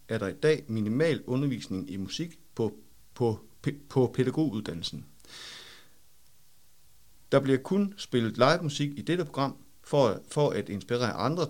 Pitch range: 100-145 Hz